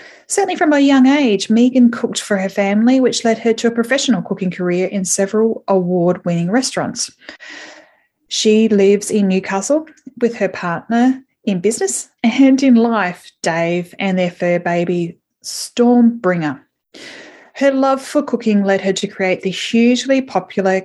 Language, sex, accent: English, female, Australian